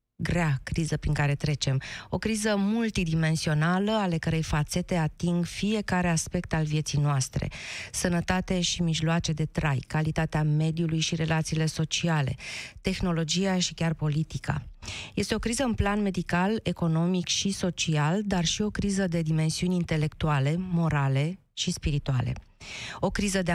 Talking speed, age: 135 wpm, 20-39